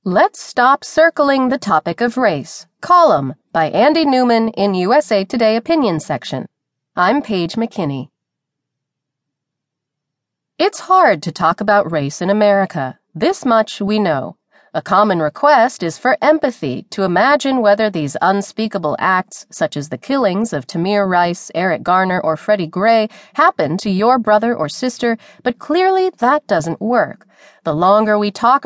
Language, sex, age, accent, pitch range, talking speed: English, female, 30-49, American, 165-255 Hz, 145 wpm